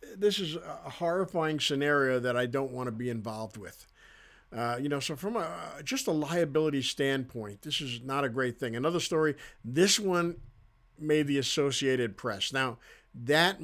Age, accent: 50-69, American